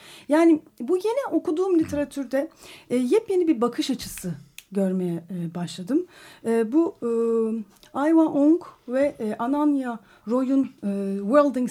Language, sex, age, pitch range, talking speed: Turkish, female, 40-59, 195-290 Hz, 125 wpm